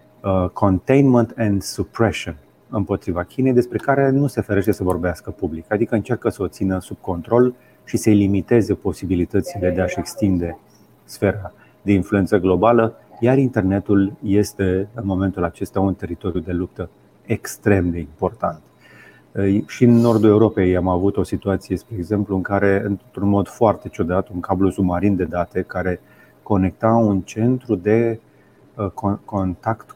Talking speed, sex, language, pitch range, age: 140 wpm, male, Romanian, 90-110 Hz, 30-49